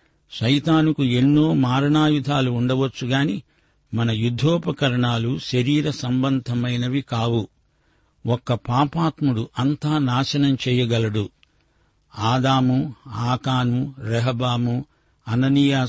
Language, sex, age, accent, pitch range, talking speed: Telugu, male, 60-79, native, 120-140 Hz, 70 wpm